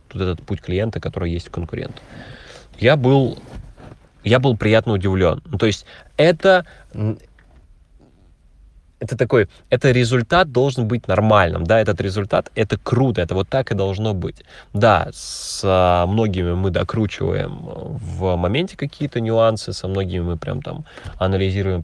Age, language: 20-39, Russian